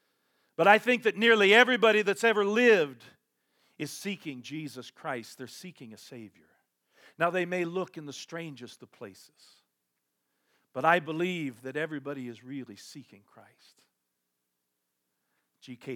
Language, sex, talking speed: English, male, 135 wpm